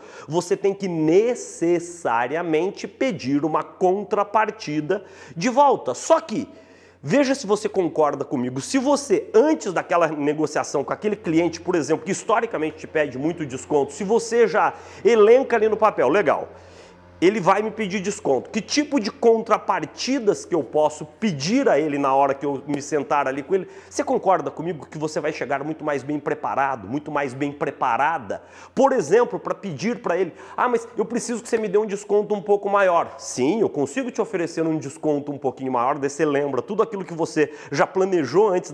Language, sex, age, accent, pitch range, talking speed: Portuguese, male, 40-59, Brazilian, 145-225 Hz, 185 wpm